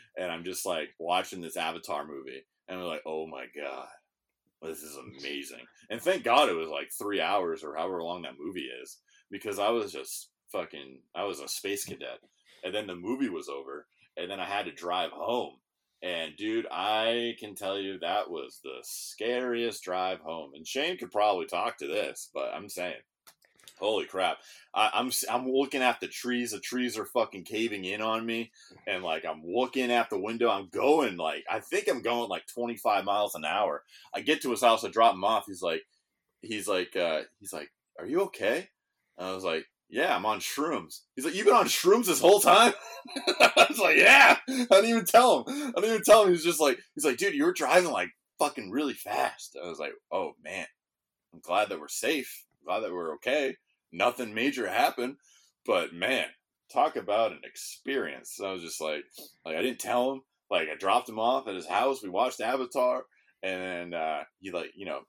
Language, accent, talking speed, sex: English, American, 210 wpm, male